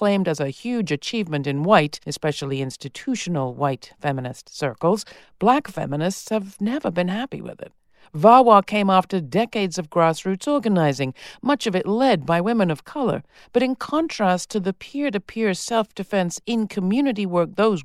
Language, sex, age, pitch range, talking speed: English, female, 50-69, 155-230 Hz, 150 wpm